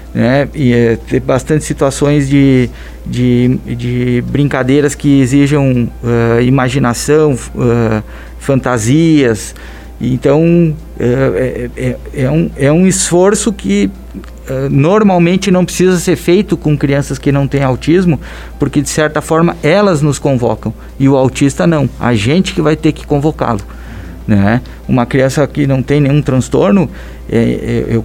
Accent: Brazilian